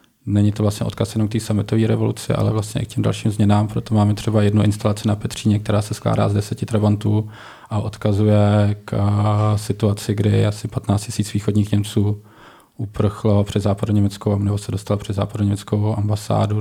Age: 20-39